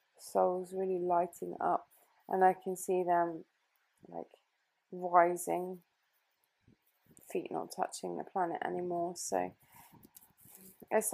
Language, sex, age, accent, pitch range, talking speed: English, female, 20-39, British, 180-215 Hz, 100 wpm